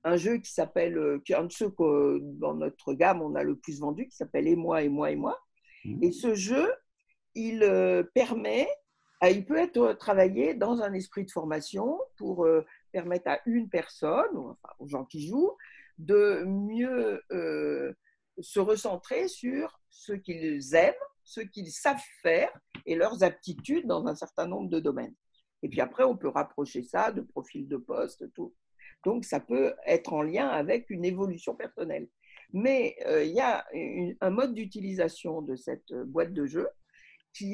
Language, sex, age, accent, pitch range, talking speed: French, female, 50-69, French, 165-250 Hz, 170 wpm